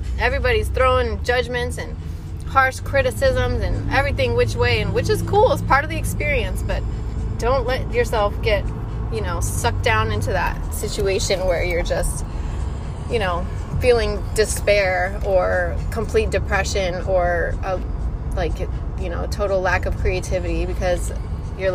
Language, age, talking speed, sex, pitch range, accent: English, 20-39, 145 wpm, female, 80-110 Hz, American